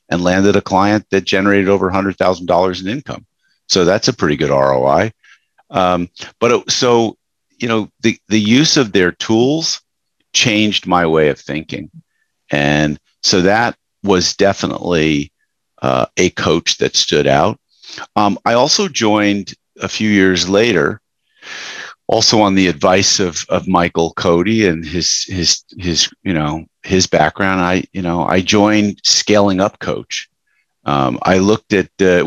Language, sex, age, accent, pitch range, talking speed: English, male, 50-69, American, 85-105 Hz, 155 wpm